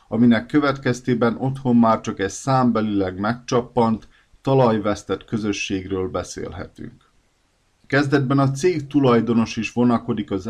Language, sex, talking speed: Hungarian, male, 105 wpm